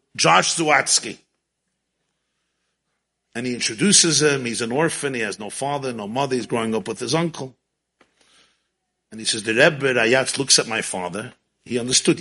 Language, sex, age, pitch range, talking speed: English, male, 50-69, 140-230 Hz, 160 wpm